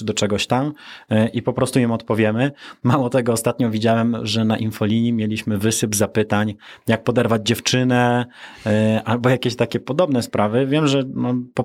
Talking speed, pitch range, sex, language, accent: 150 wpm, 110-135 Hz, male, Polish, native